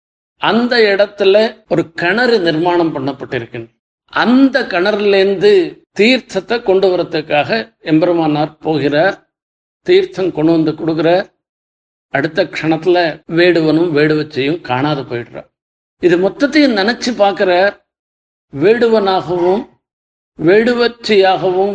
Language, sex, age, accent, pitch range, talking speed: Tamil, male, 50-69, native, 150-200 Hz, 80 wpm